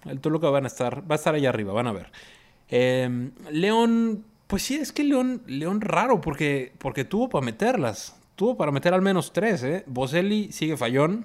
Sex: male